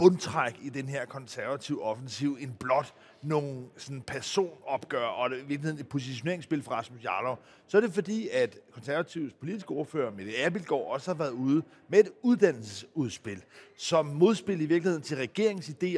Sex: male